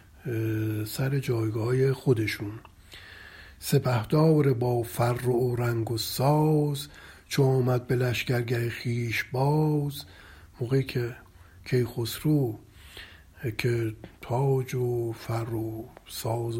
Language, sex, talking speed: Persian, male, 95 wpm